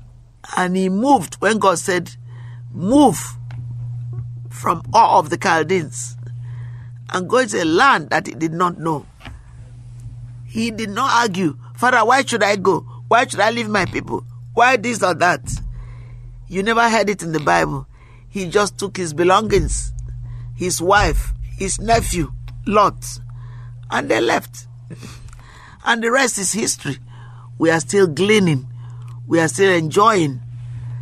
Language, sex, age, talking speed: English, male, 50-69, 145 wpm